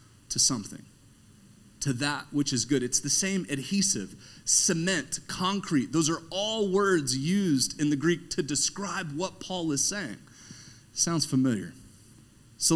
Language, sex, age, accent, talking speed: English, male, 40-59, American, 140 wpm